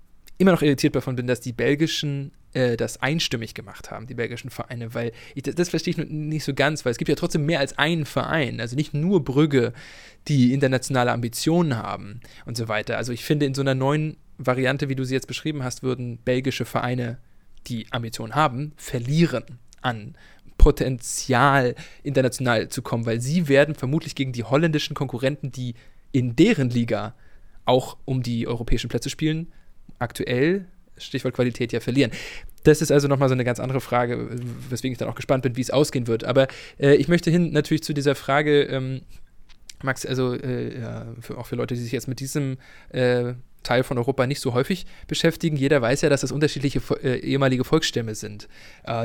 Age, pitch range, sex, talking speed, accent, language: 20-39, 120-145 Hz, male, 185 wpm, German, English